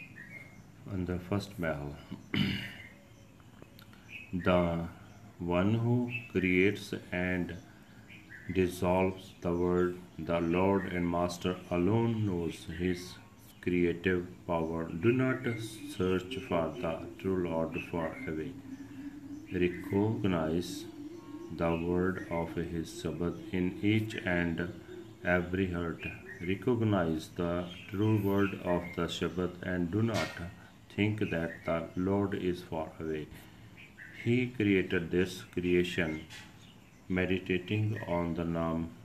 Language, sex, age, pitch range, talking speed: Punjabi, male, 40-59, 85-100 Hz, 100 wpm